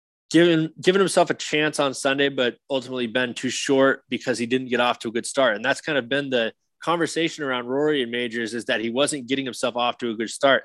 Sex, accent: male, American